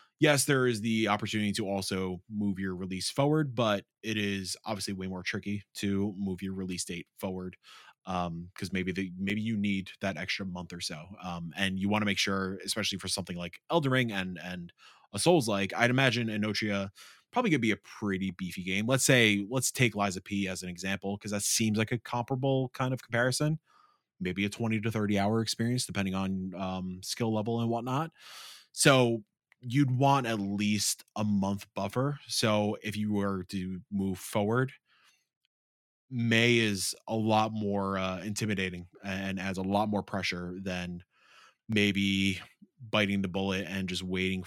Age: 20-39